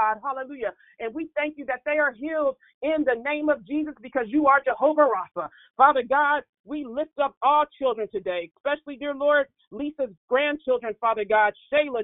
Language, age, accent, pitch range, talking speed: English, 40-59, American, 230-310 Hz, 180 wpm